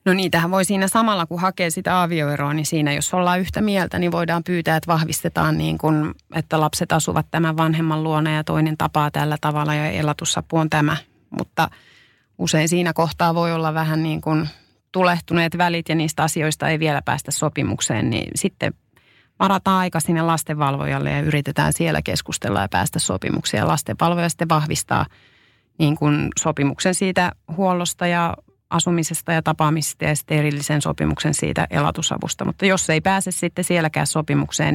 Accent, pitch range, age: native, 150-170 Hz, 30-49